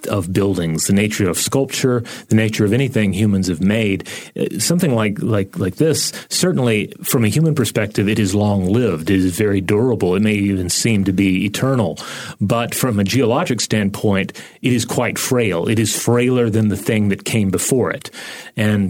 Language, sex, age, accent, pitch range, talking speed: English, male, 30-49, American, 100-125 Hz, 180 wpm